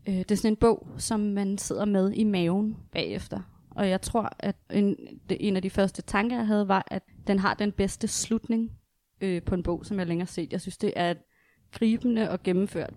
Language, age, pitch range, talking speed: Danish, 20-39, 185-215 Hz, 215 wpm